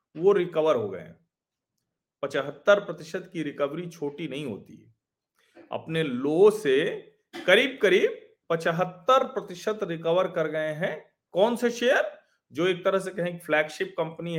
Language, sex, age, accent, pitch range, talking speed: Hindi, male, 40-59, native, 135-185 Hz, 140 wpm